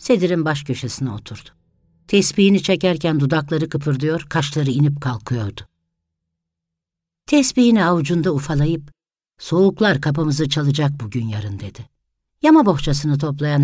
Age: 60-79